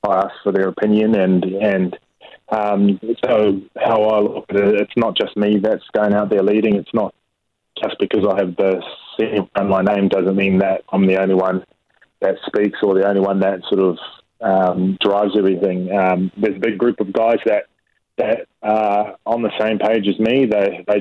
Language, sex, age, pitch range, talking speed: English, male, 20-39, 95-105 Hz, 200 wpm